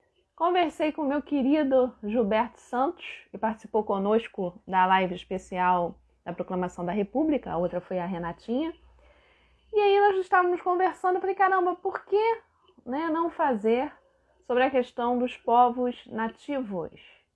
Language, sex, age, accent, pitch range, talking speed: Portuguese, female, 20-39, Brazilian, 195-260 Hz, 140 wpm